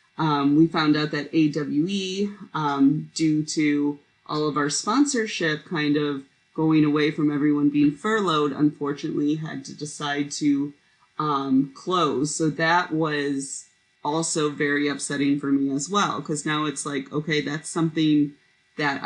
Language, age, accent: English, 30-49, American